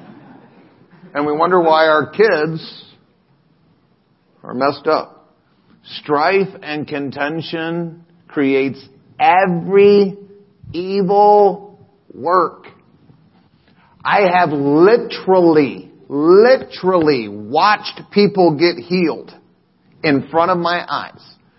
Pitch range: 110-170 Hz